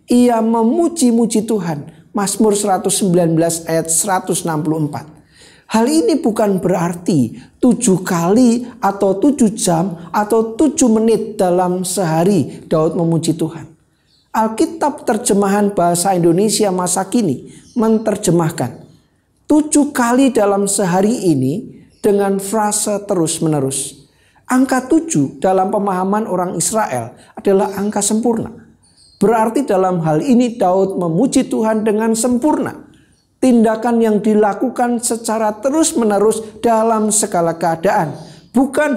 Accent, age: native, 40-59